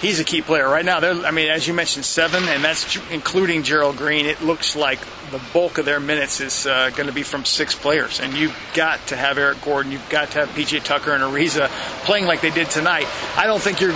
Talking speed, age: 240 wpm, 40-59